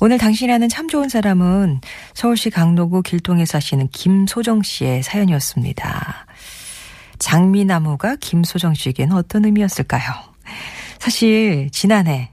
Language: Korean